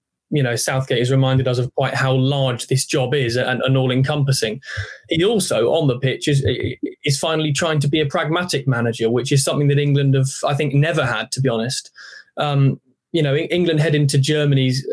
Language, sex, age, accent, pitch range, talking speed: English, male, 10-29, British, 130-145 Hz, 205 wpm